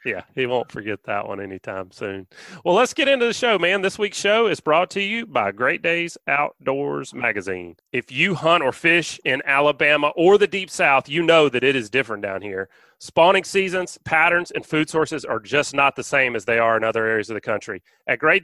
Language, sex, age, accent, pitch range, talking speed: English, male, 30-49, American, 125-170 Hz, 220 wpm